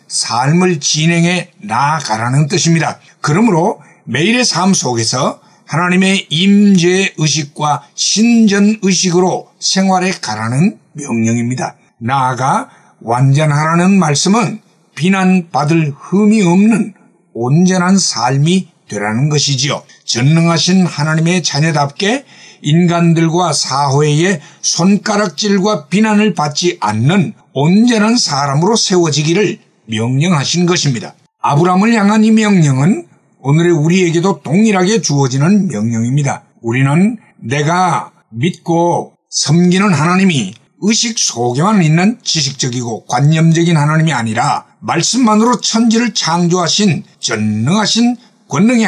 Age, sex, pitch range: 60-79, male, 145-195 Hz